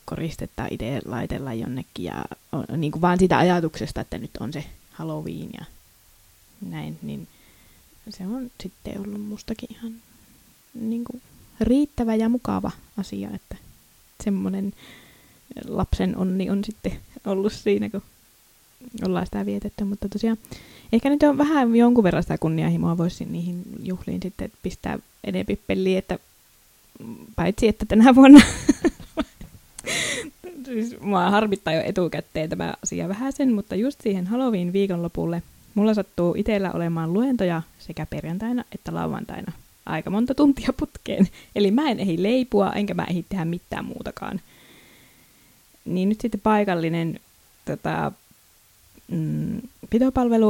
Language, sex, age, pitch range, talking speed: Finnish, female, 20-39, 175-225 Hz, 125 wpm